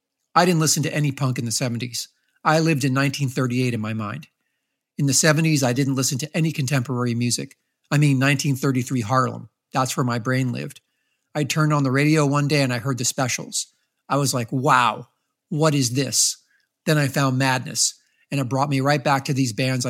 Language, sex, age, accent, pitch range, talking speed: English, male, 50-69, American, 125-145 Hz, 200 wpm